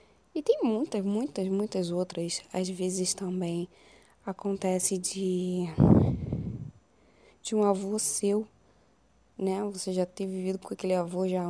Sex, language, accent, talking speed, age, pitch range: female, Portuguese, Brazilian, 125 wpm, 10-29, 175-205 Hz